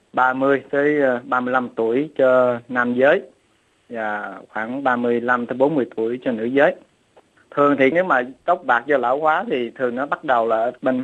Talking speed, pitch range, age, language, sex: 160 wpm, 115-135 Hz, 20-39, Vietnamese, male